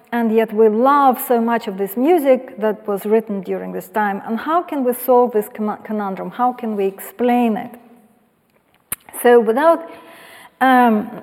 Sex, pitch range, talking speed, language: female, 215-265 Hz, 160 wpm, English